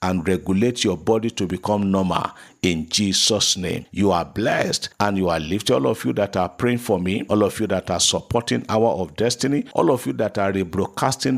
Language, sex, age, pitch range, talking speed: English, male, 50-69, 95-120 Hz, 210 wpm